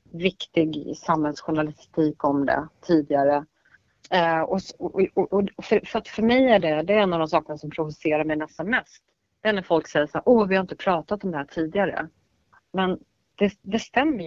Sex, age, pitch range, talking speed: female, 30-49, 160-210 Hz, 200 wpm